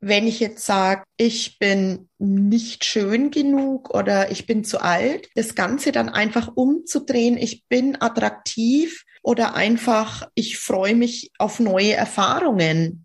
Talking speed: 140 wpm